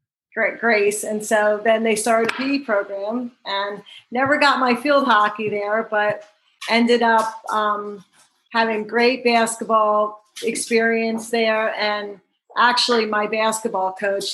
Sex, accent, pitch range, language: female, American, 210-235 Hz, English